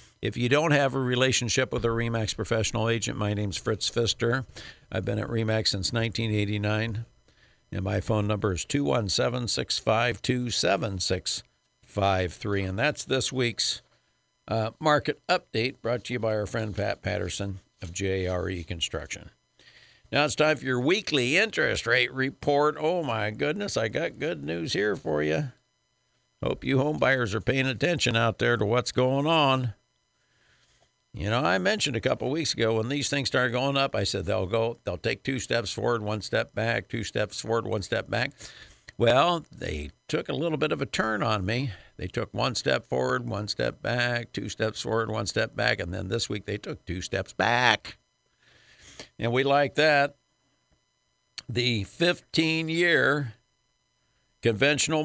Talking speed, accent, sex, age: 165 wpm, American, male, 60-79